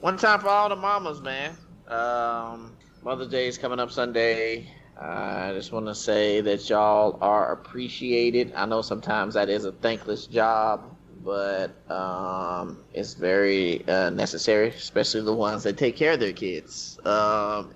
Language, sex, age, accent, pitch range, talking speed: English, male, 20-39, American, 100-115 Hz, 160 wpm